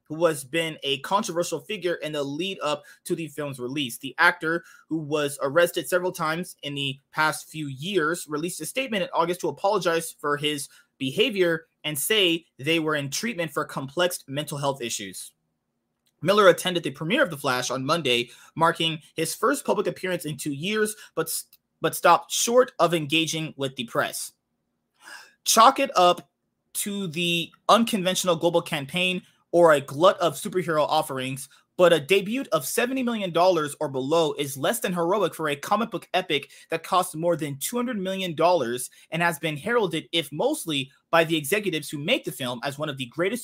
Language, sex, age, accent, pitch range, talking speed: English, male, 20-39, American, 150-185 Hz, 175 wpm